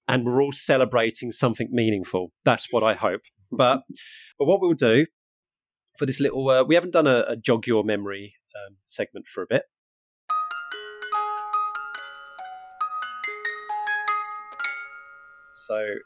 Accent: British